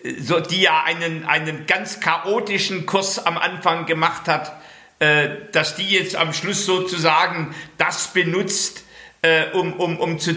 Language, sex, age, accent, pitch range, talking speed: German, male, 50-69, German, 165-200 Hz, 150 wpm